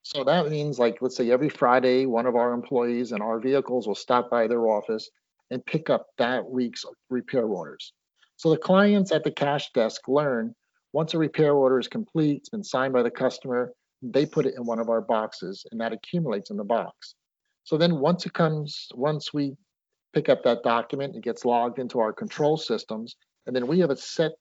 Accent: American